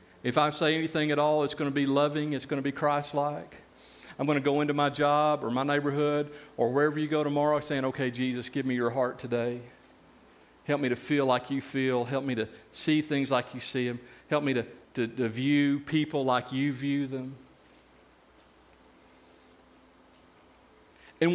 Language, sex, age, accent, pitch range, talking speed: English, male, 50-69, American, 135-190 Hz, 190 wpm